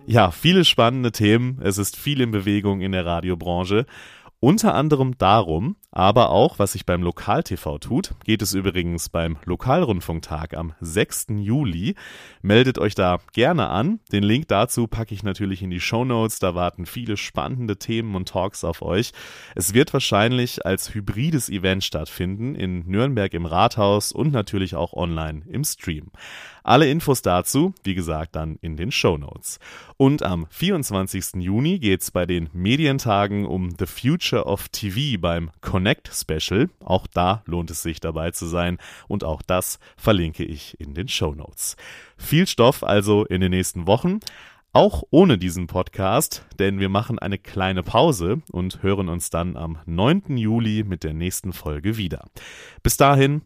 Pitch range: 90-115 Hz